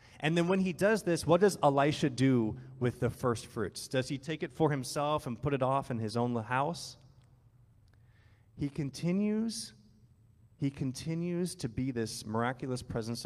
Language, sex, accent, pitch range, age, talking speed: English, male, American, 115-140 Hz, 30-49, 165 wpm